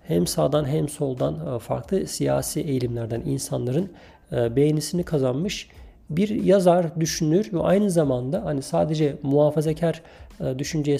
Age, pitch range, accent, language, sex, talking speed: 40-59, 120-145 Hz, native, Turkish, male, 110 wpm